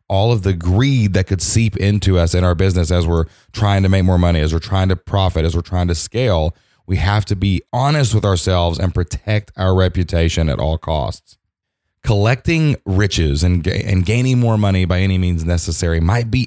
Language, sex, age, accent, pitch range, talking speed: English, male, 30-49, American, 90-105 Hz, 200 wpm